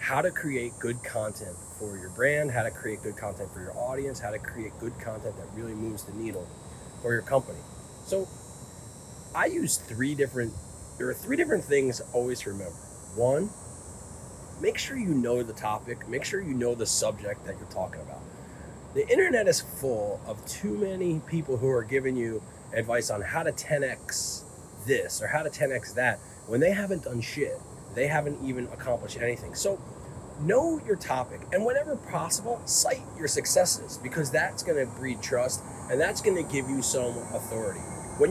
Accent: American